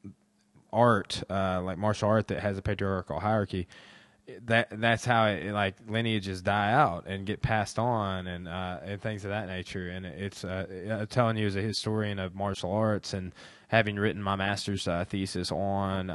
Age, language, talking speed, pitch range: 20-39, English, 180 wpm, 95-115 Hz